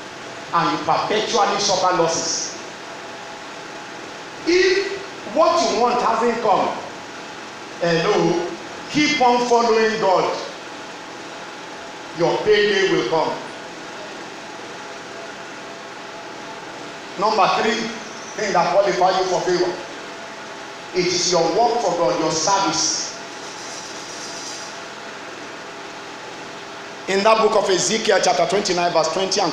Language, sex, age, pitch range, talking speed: English, male, 50-69, 180-245 Hz, 95 wpm